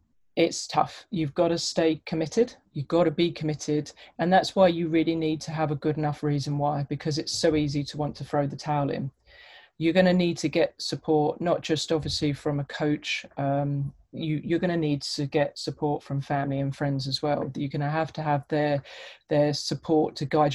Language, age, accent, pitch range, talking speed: English, 30-49, British, 145-160 Hz, 215 wpm